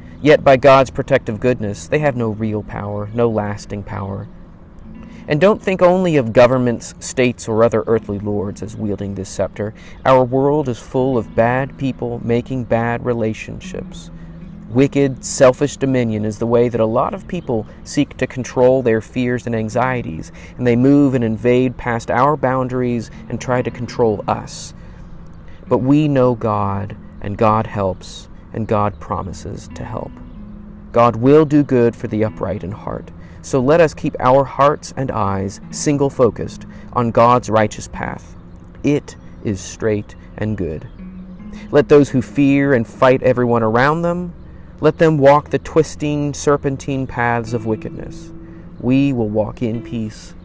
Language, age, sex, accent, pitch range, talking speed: English, 30-49, male, American, 105-140 Hz, 155 wpm